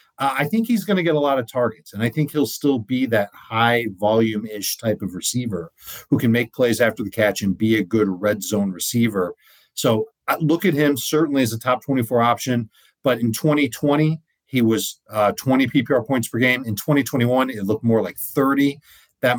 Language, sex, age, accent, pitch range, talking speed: English, male, 40-59, American, 115-140 Hz, 210 wpm